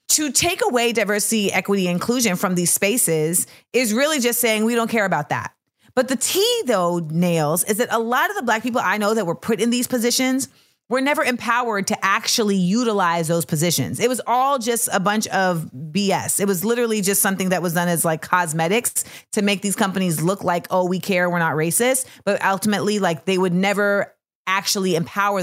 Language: English